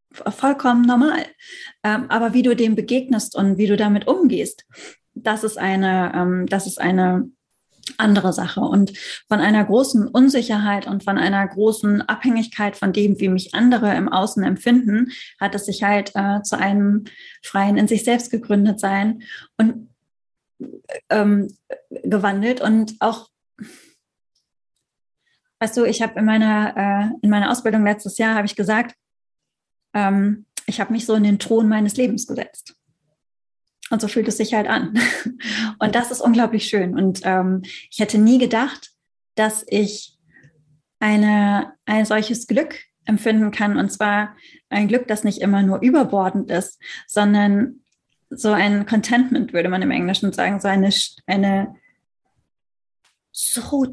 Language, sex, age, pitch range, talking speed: German, female, 20-39, 200-240 Hz, 140 wpm